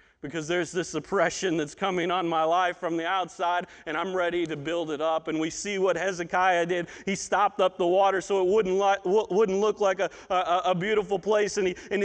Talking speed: 225 wpm